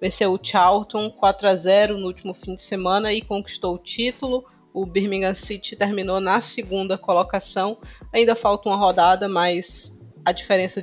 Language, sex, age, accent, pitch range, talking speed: Portuguese, female, 20-39, Brazilian, 180-205 Hz, 150 wpm